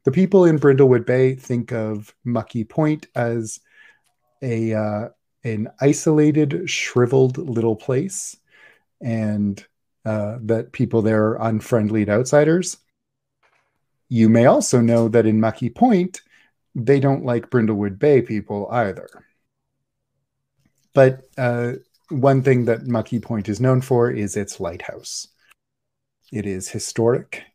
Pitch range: 110-135 Hz